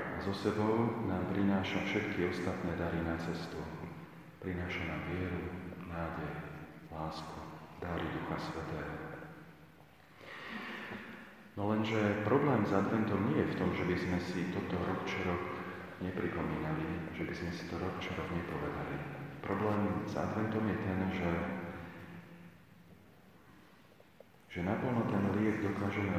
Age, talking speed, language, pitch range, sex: 40-59, 125 wpm, Slovak, 85-100 Hz, male